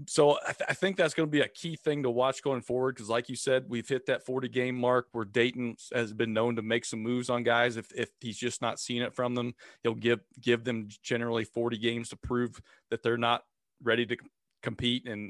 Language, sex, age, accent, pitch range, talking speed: English, male, 40-59, American, 115-135 Hz, 245 wpm